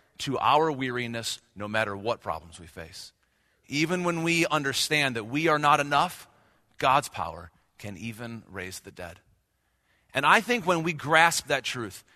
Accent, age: American, 40-59